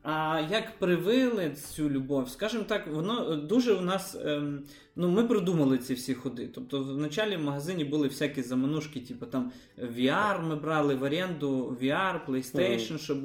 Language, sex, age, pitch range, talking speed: Ukrainian, male, 20-39, 140-180 Hz, 165 wpm